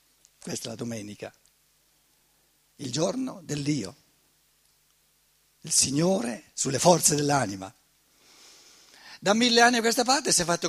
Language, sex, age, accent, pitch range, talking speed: Italian, male, 60-79, native, 140-200 Hz, 125 wpm